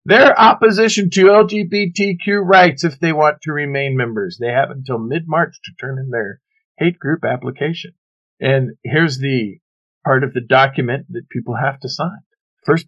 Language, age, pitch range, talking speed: English, 50-69, 125-175 Hz, 170 wpm